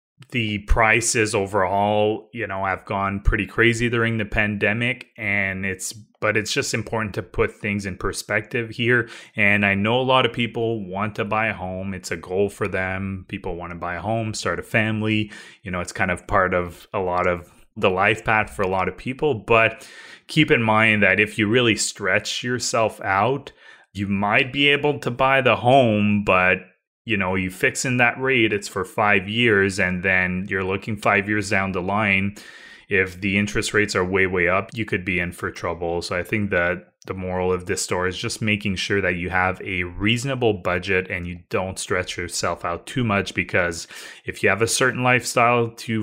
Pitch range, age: 95-115 Hz, 20-39